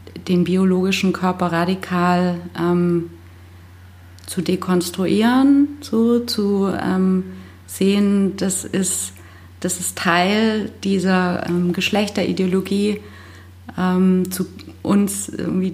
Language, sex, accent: German, female, German